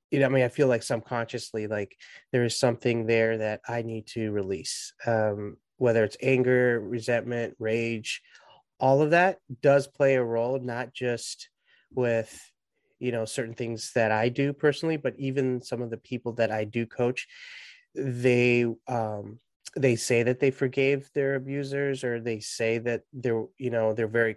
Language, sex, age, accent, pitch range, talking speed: English, male, 30-49, American, 110-130 Hz, 170 wpm